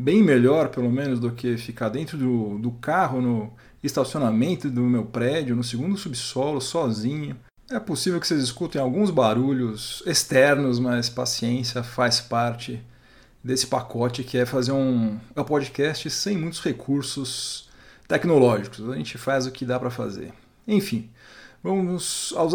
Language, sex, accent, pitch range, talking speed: Portuguese, male, Brazilian, 125-180 Hz, 145 wpm